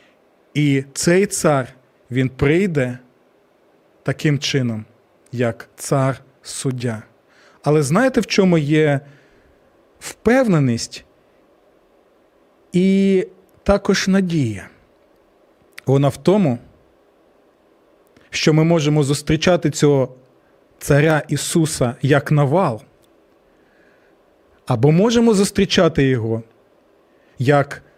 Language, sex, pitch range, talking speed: Ukrainian, male, 125-170 Hz, 75 wpm